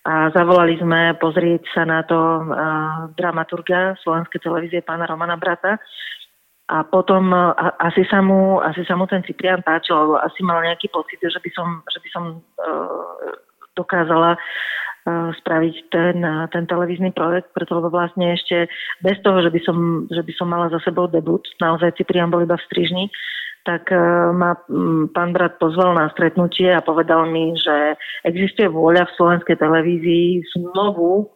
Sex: female